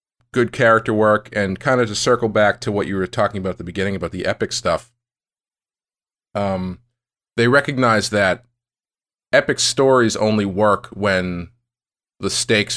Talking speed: 155 wpm